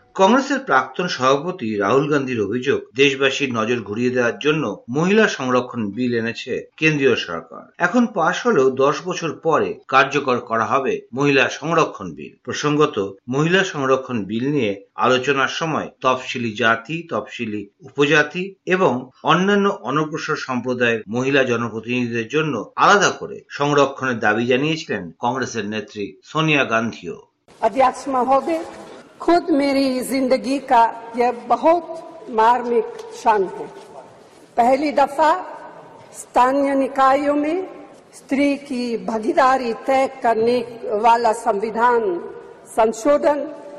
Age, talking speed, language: 50-69, 100 wpm, Bengali